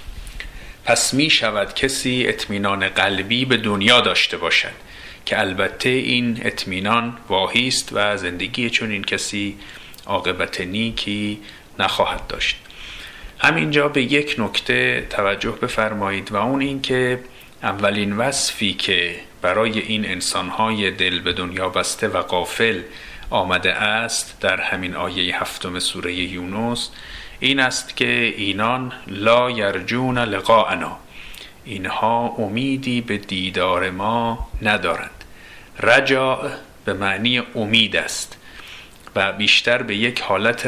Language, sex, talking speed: Persian, male, 115 wpm